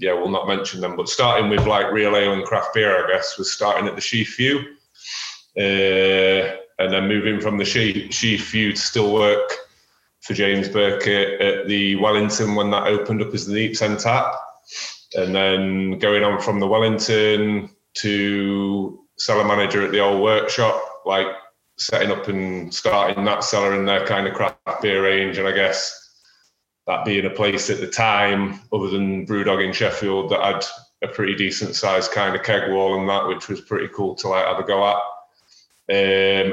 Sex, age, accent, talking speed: male, 30-49, British, 185 wpm